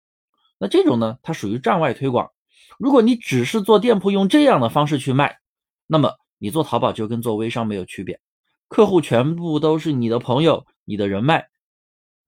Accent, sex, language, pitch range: native, male, Chinese, 115-185 Hz